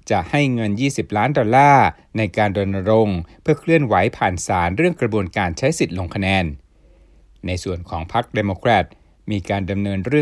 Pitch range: 95-130 Hz